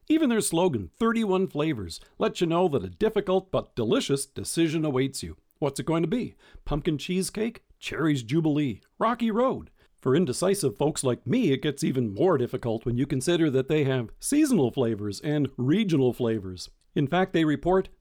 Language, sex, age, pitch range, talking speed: English, male, 50-69, 130-185 Hz, 175 wpm